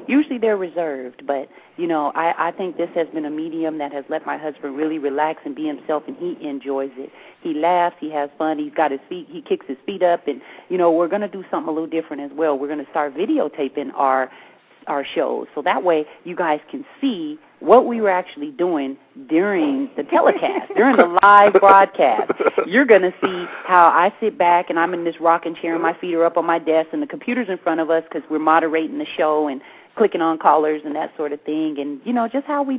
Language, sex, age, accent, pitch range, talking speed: English, female, 40-59, American, 150-200 Hz, 240 wpm